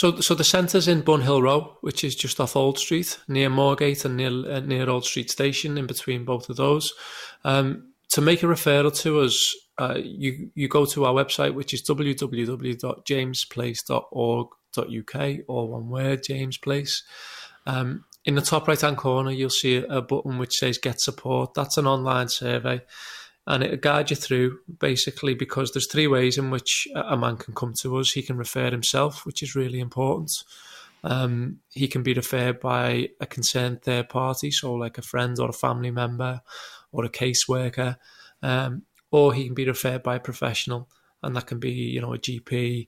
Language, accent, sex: English, British, male